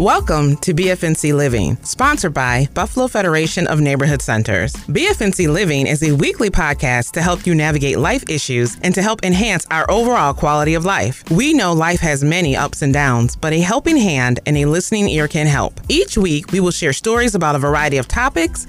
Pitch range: 140-180 Hz